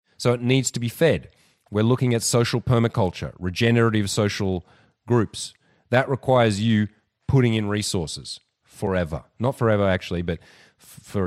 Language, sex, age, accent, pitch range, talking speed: English, male, 30-49, Australian, 95-125 Hz, 140 wpm